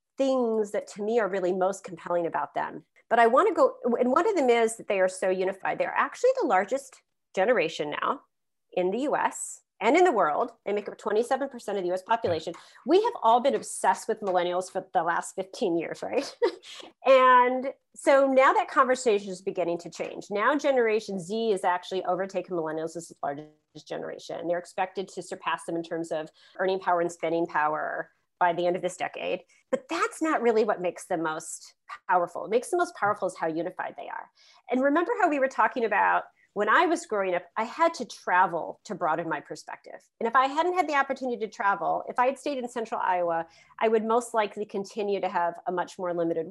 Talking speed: 210 wpm